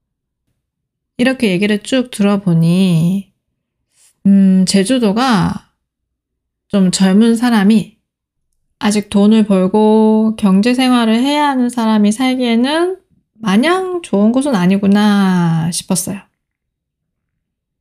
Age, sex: 20-39, female